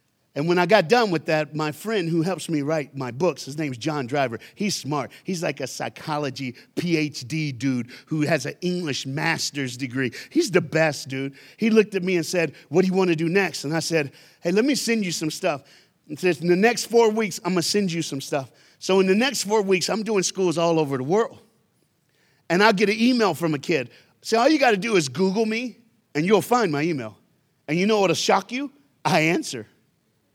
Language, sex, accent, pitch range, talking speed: English, male, American, 135-190 Hz, 235 wpm